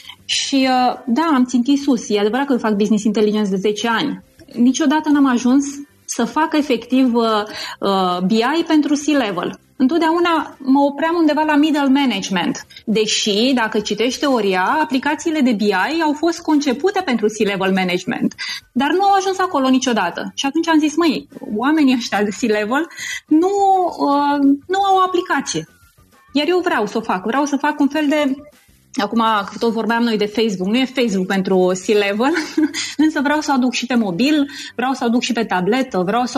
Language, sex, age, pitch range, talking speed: Romanian, female, 20-39, 225-300 Hz, 165 wpm